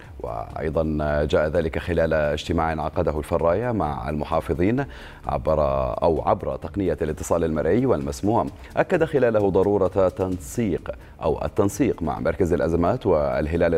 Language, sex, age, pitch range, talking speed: Arabic, male, 30-49, 75-90 Hz, 115 wpm